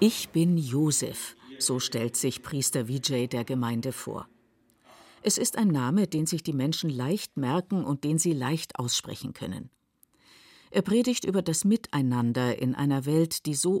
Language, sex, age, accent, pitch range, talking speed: German, female, 50-69, German, 135-185 Hz, 160 wpm